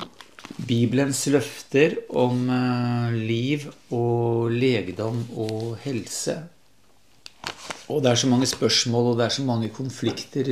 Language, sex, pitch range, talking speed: English, male, 115-130 Hz, 120 wpm